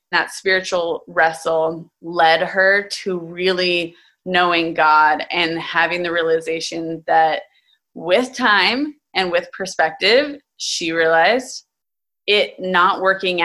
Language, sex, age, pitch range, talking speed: English, female, 20-39, 170-205 Hz, 105 wpm